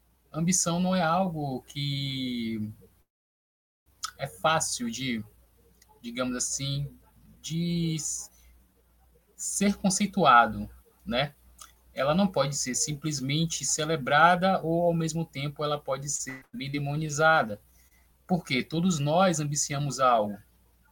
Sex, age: male, 20-39